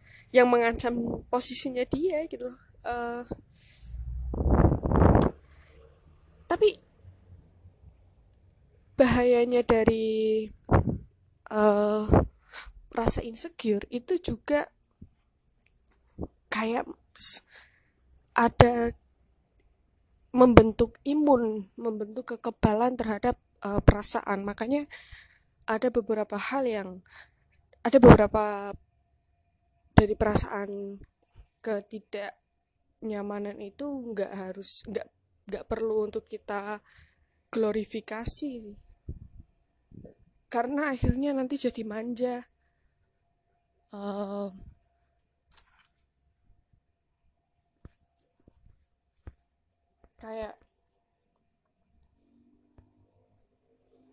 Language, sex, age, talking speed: Indonesian, female, 20-39, 55 wpm